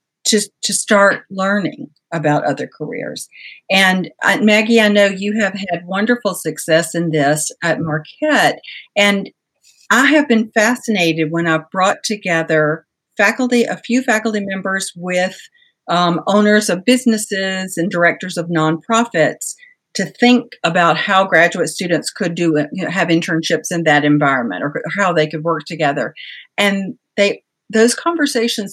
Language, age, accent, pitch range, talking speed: English, 50-69, American, 165-220 Hz, 145 wpm